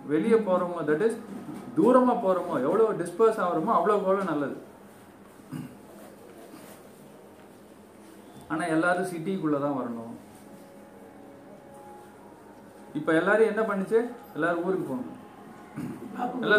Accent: native